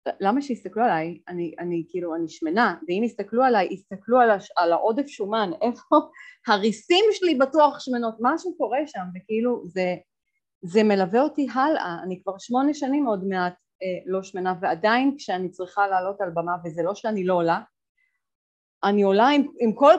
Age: 30-49